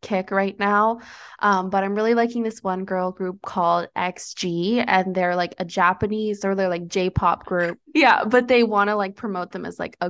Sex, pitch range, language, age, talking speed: female, 175-205 Hz, English, 20-39, 210 wpm